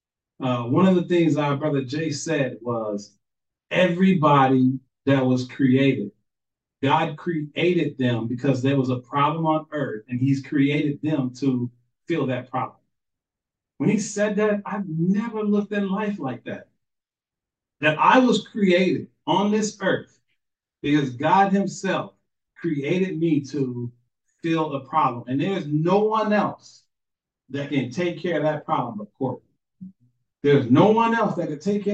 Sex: male